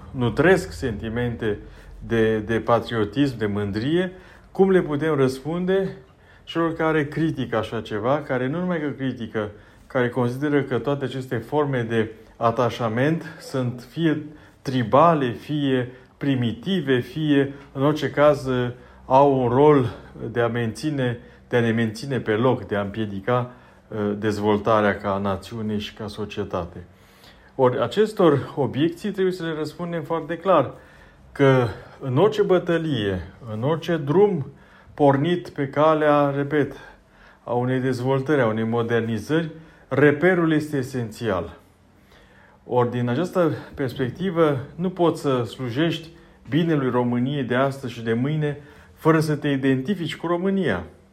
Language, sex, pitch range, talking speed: Romanian, male, 115-155 Hz, 130 wpm